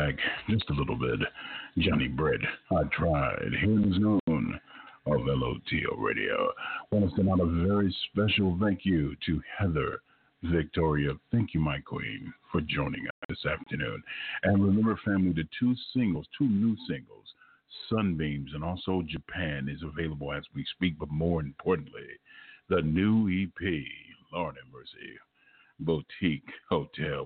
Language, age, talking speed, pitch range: English, 50-69, 145 wpm, 80-100 Hz